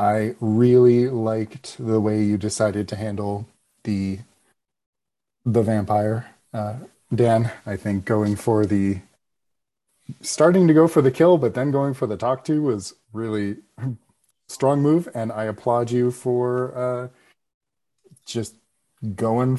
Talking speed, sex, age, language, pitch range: 135 wpm, male, 30-49, English, 105-125 Hz